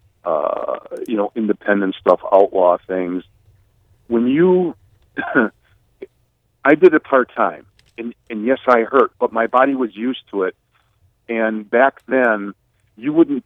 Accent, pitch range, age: American, 95-125 Hz, 50-69